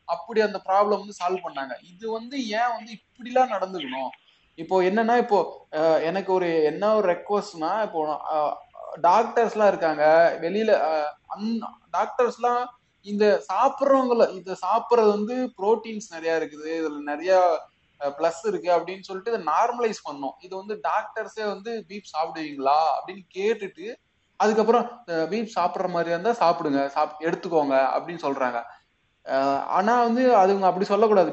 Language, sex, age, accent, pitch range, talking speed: Tamil, male, 20-39, native, 155-210 Hz, 120 wpm